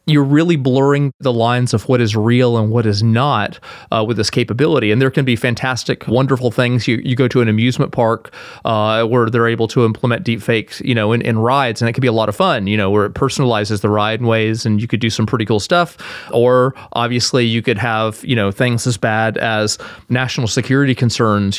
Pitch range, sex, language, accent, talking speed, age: 110-125 Hz, male, English, American, 230 wpm, 30-49